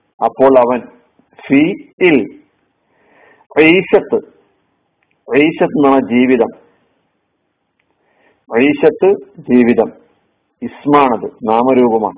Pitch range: 125-165 Hz